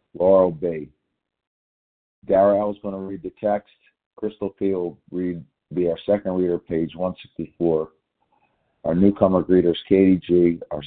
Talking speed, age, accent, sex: 140 wpm, 50-69, American, male